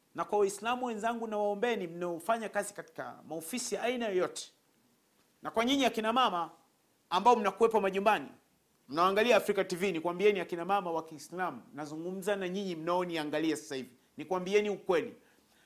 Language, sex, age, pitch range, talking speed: Swahili, male, 40-59, 190-245 Hz, 145 wpm